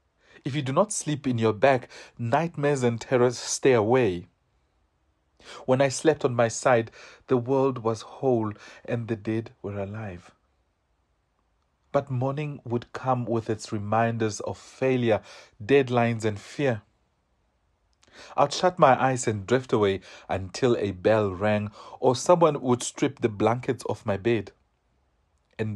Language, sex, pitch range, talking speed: English, male, 100-135 Hz, 140 wpm